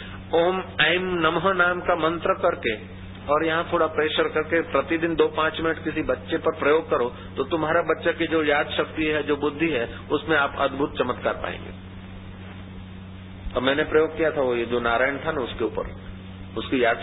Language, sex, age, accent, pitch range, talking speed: Hindi, male, 40-59, native, 95-145 Hz, 185 wpm